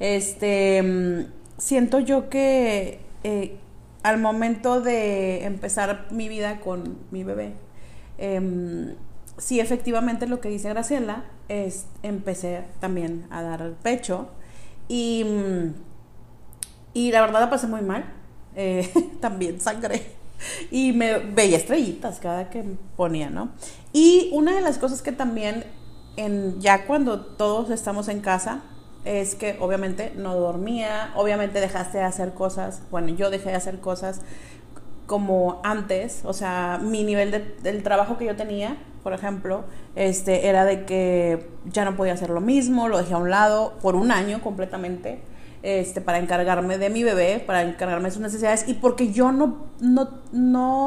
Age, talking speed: 40-59, 150 wpm